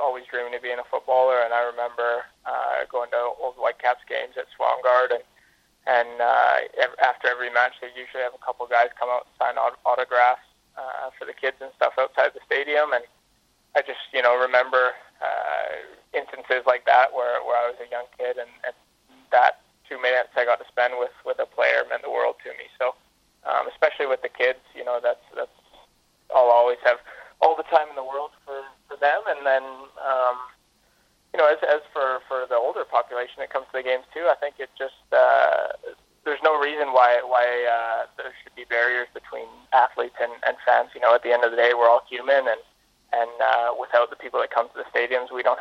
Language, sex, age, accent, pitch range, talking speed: English, male, 20-39, American, 120-135 Hz, 210 wpm